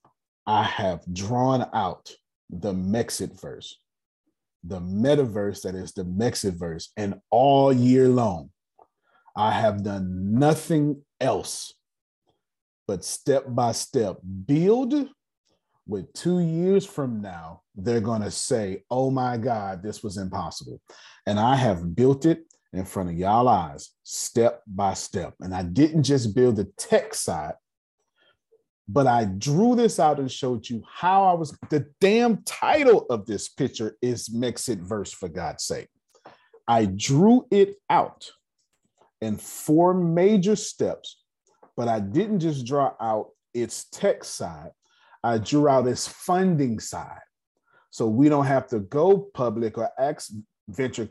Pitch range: 105-160 Hz